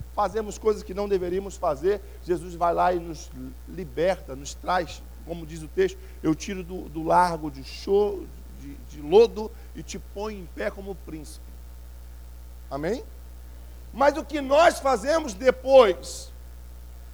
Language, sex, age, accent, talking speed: English, male, 50-69, Brazilian, 140 wpm